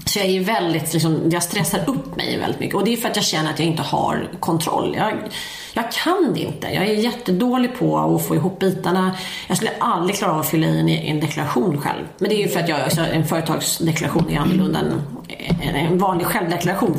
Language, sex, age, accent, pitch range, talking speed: Swedish, female, 30-49, native, 160-200 Hz, 220 wpm